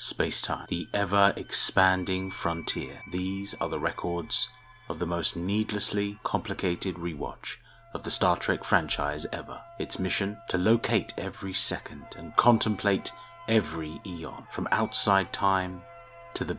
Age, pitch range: 30-49, 95-130 Hz